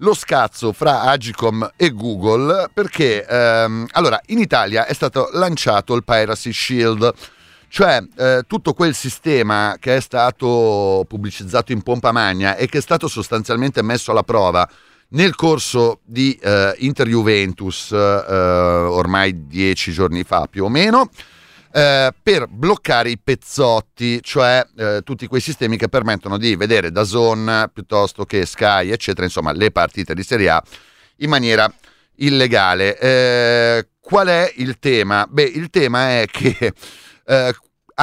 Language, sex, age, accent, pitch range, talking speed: Italian, male, 40-59, native, 100-135 Hz, 145 wpm